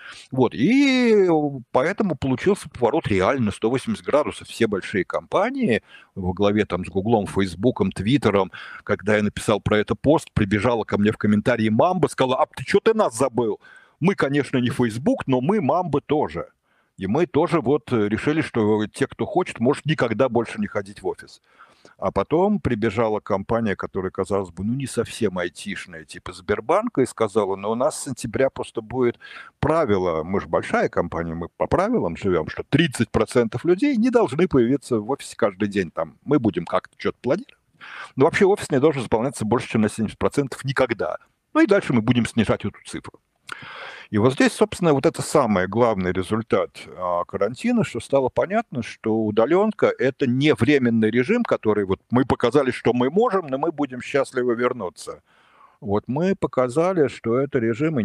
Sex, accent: male, native